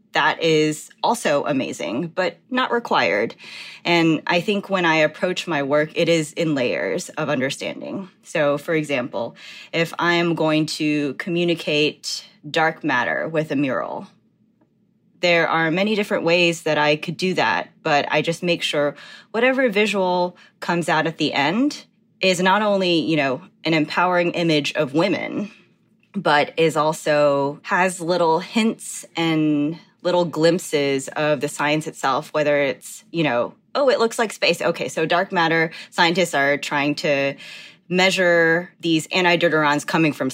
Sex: female